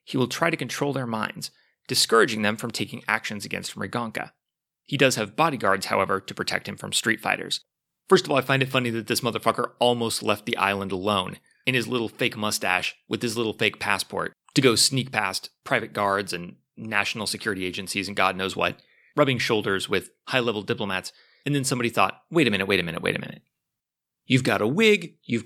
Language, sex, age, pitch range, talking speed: English, male, 30-49, 105-145 Hz, 205 wpm